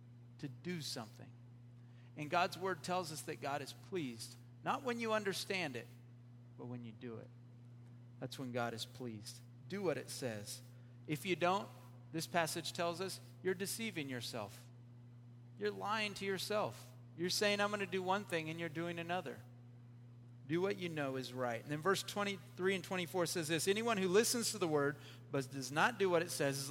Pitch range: 120-165 Hz